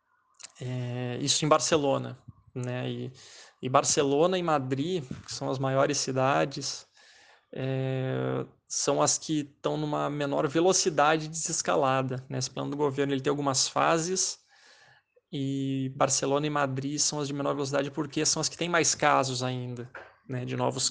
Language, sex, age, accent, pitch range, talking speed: Portuguese, male, 20-39, Brazilian, 130-150 Hz, 150 wpm